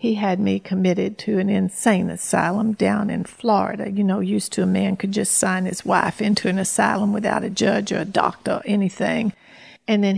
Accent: American